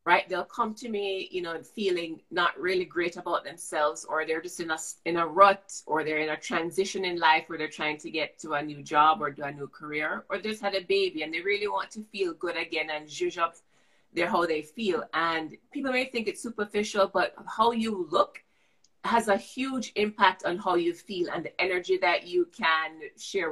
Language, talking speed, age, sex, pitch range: English, 215 wpm, 30-49, female, 160-200 Hz